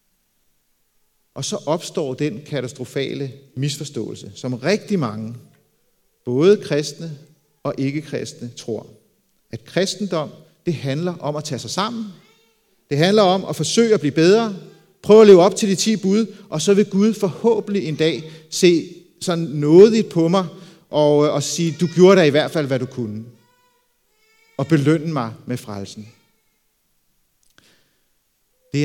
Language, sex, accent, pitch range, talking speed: Danish, male, native, 130-175 Hz, 145 wpm